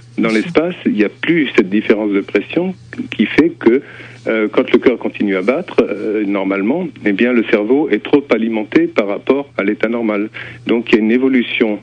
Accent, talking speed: French, 205 wpm